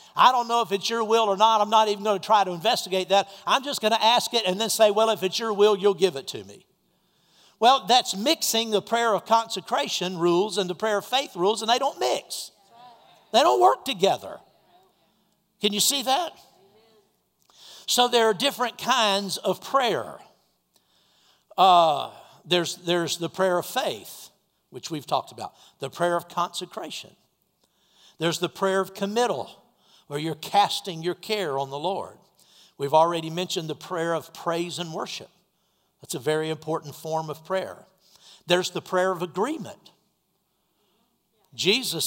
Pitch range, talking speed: 170-215 Hz, 170 wpm